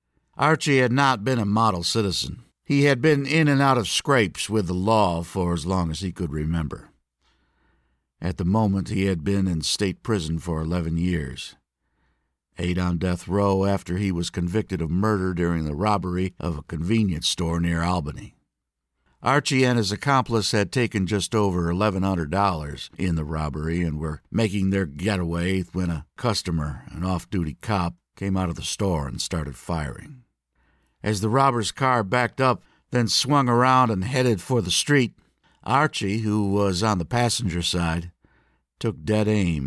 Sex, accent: male, American